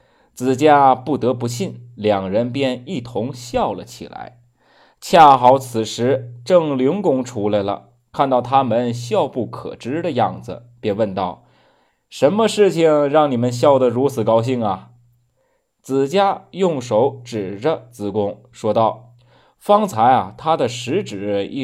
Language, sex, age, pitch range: Chinese, male, 20-39, 110-140 Hz